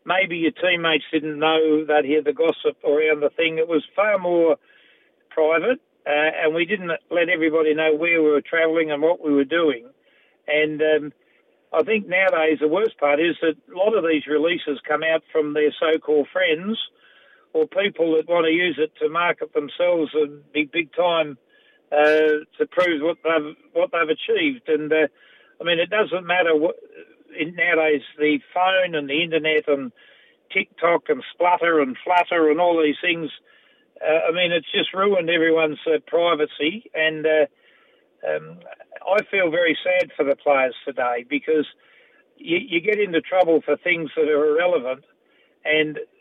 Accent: Australian